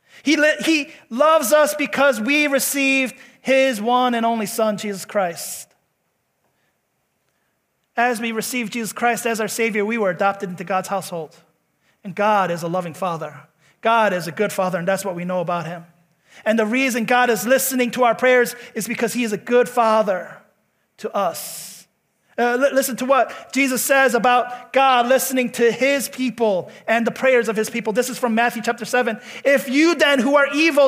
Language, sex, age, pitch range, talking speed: English, male, 30-49, 220-285 Hz, 185 wpm